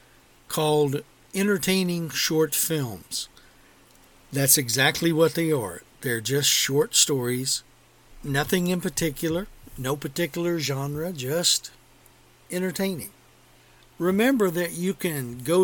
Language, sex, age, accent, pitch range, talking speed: English, male, 60-79, American, 130-165 Hz, 100 wpm